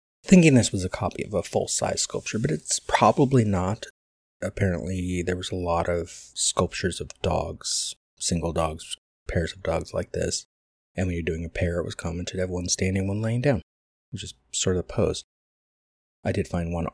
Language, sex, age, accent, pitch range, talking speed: English, male, 30-49, American, 80-95 Hz, 195 wpm